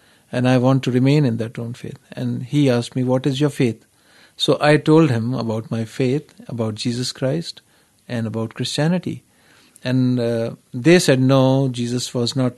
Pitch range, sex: 120-145 Hz, male